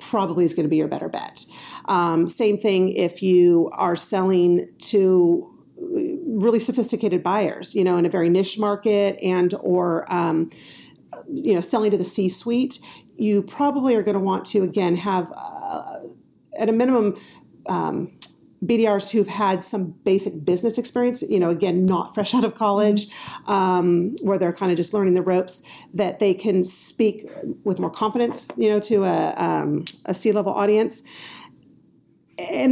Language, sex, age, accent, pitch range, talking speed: English, female, 40-59, American, 180-215 Hz, 165 wpm